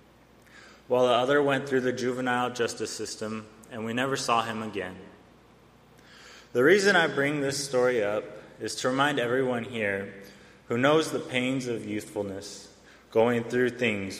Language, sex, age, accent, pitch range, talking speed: English, male, 20-39, American, 110-130 Hz, 150 wpm